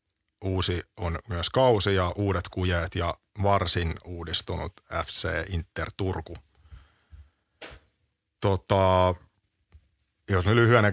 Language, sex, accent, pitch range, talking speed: Finnish, male, native, 85-100 Hz, 90 wpm